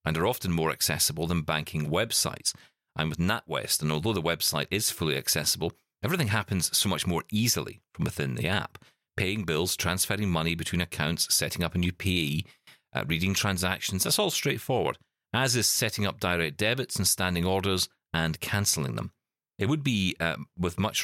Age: 40-59